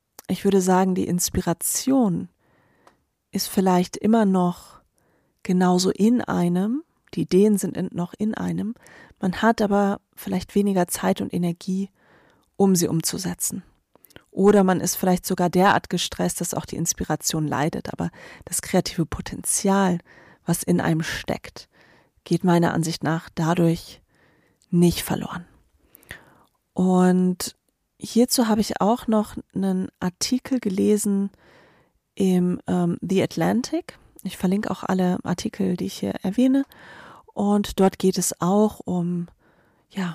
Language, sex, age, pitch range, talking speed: German, female, 30-49, 175-205 Hz, 125 wpm